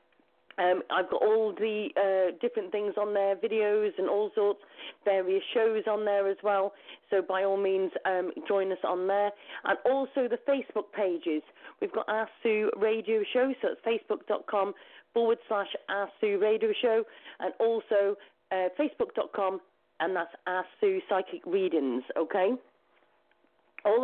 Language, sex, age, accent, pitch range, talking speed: English, female, 40-59, British, 195-245 Hz, 145 wpm